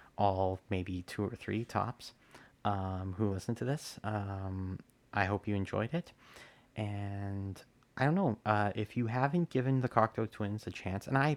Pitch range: 100-120 Hz